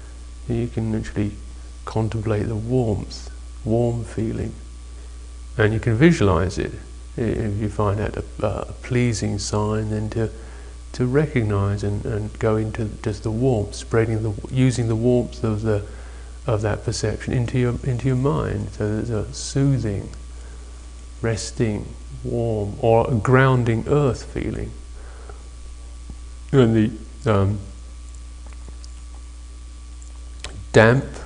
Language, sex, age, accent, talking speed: English, male, 50-69, British, 120 wpm